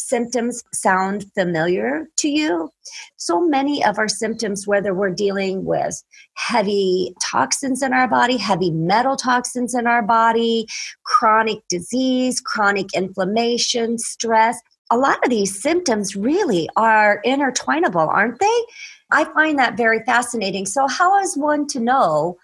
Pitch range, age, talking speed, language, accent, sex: 195-255 Hz, 40-59, 135 wpm, English, American, female